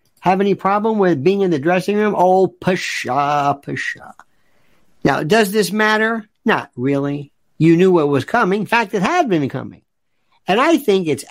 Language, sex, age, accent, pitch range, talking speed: English, male, 50-69, American, 135-205 Hz, 175 wpm